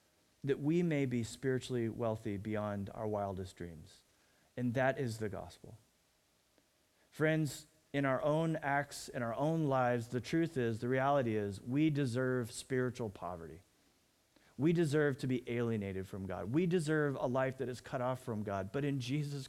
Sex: male